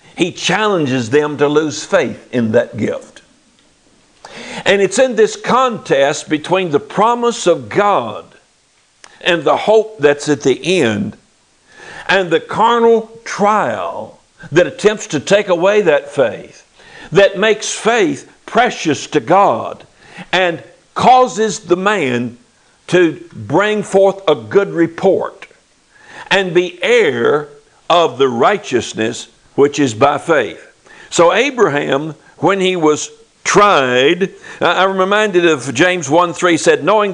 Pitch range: 155-210 Hz